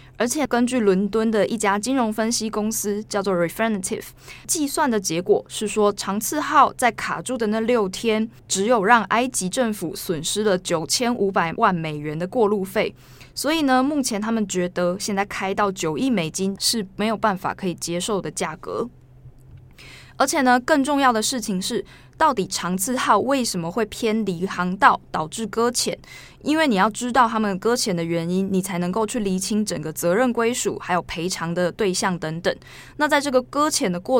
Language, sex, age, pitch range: Chinese, female, 20-39, 180-235 Hz